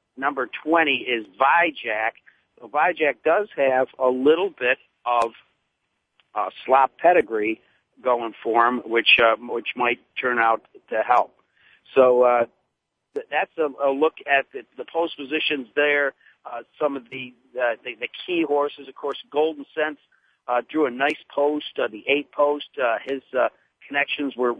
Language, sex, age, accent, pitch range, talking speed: English, male, 50-69, American, 125-150 Hz, 160 wpm